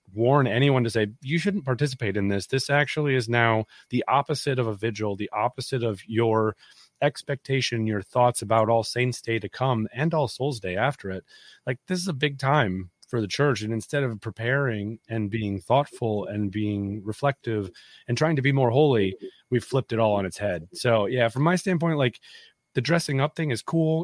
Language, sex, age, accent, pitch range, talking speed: English, male, 30-49, American, 105-135 Hz, 200 wpm